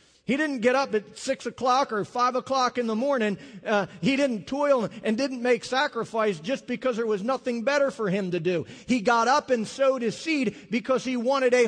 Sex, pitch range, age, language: male, 210-255 Hz, 40-59, English